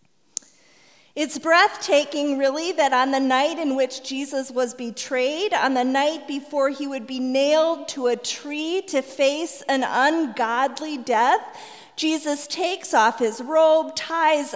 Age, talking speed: 40-59, 140 wpm